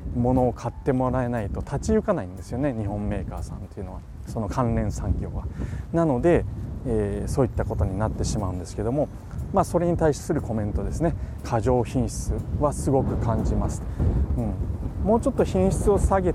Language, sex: Japanese, male